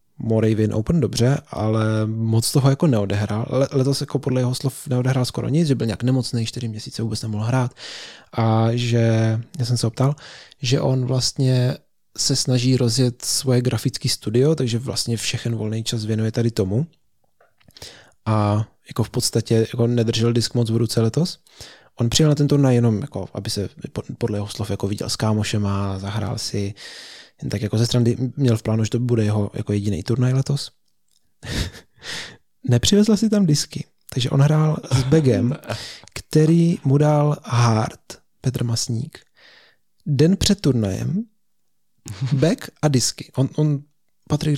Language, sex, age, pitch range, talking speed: Czech, male, 20-39, 115-140 Hz, 155 wpm